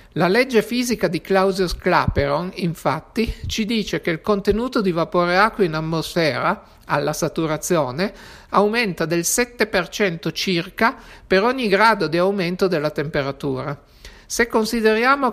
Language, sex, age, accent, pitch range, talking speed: Italian, male, 60-79, native, 160-205 Hz, 125 wpm